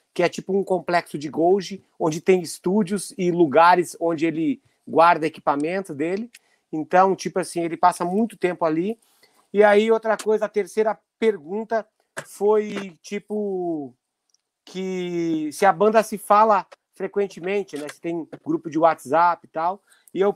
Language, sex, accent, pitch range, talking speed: Portuguese, male, Brazilian, 175-210 Hz, 150 wpm